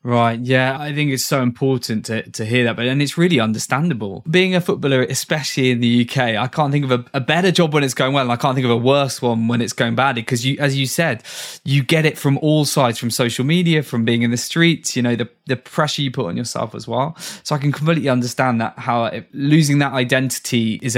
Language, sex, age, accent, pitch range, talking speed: English, male, 10-29, British, 120-140 Hz, 250 wpm